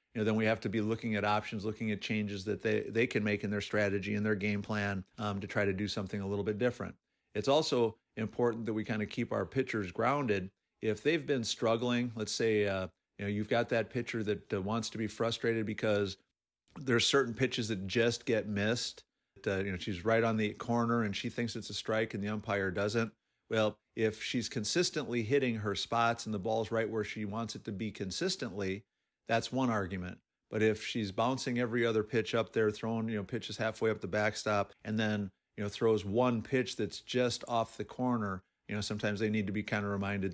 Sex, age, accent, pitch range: male, 50-69, American, 105-120 Hz